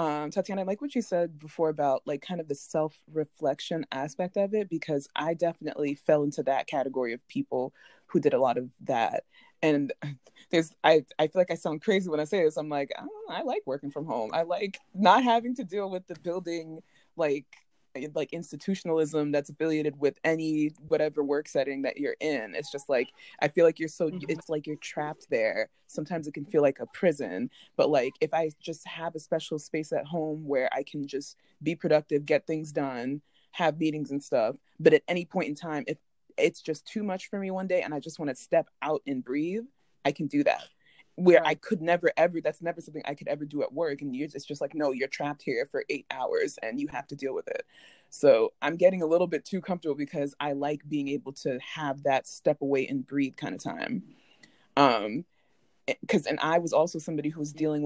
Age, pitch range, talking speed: 20-39, 145-175 Hz, 225 wpm